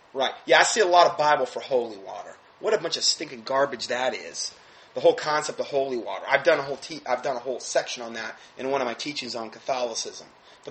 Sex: male